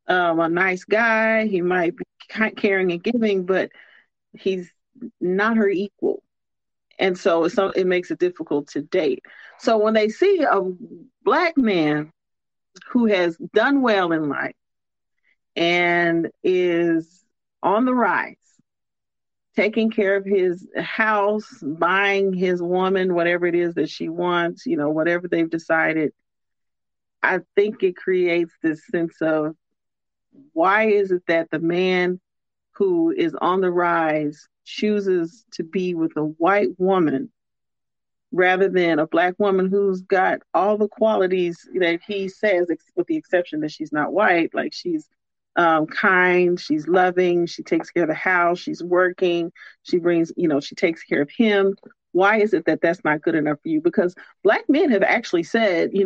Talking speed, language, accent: 155 wpm, English, American